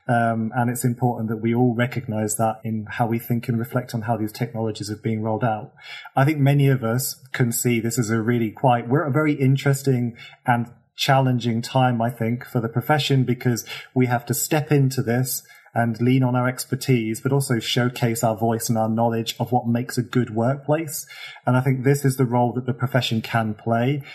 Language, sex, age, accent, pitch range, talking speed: English, male, 30-49, British, 115-135 Hz, 210 wpm